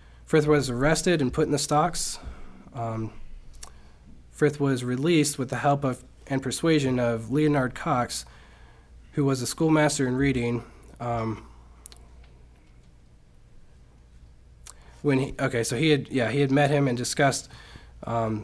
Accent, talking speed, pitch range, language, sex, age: American, 135 wpm, 110-140 Hz, English, male, 20-39